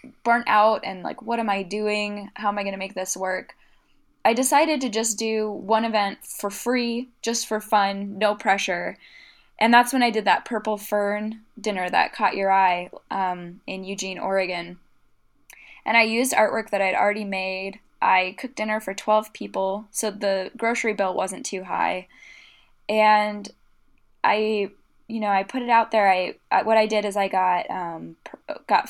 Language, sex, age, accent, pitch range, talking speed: English, female, 10-29, American, 195-240 Hz, 180 wpm